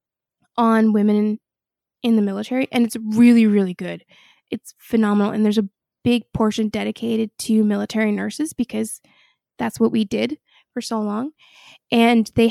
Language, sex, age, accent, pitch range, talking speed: English, female, 20-39, American, 220-245 Hz, 150 wpm